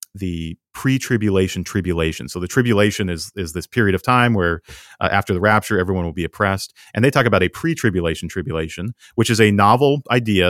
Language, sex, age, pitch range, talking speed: English, male, 40-59, 90-115 Hz, 190 wpm